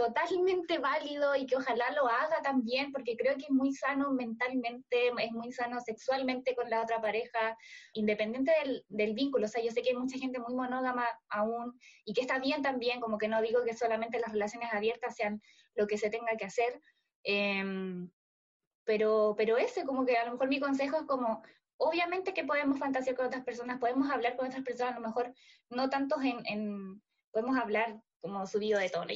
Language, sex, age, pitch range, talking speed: Spanish, female, 20-39, 225-270 Hz, 200 wpm